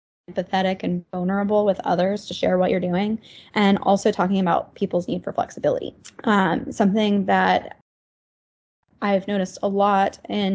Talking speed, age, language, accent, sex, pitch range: 150 wpm, 10-29, English, American, female, 185-215 Hz